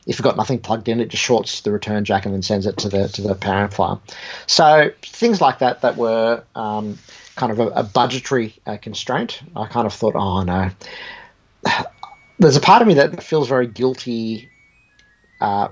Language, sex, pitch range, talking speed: English, male, 105-120 Hz, 200 wpm